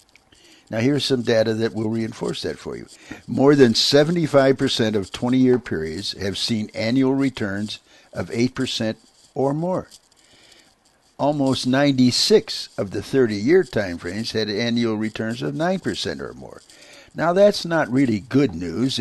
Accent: American